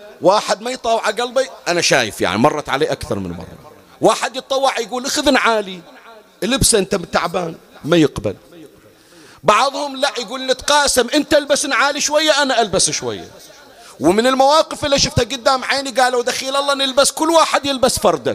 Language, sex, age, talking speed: Arabic, male, 40-59, 155 wpm